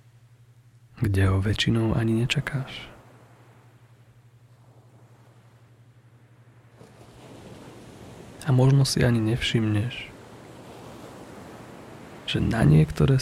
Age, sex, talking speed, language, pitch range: 30-49, male, 60 wpm, Slovak, 115-125 Hz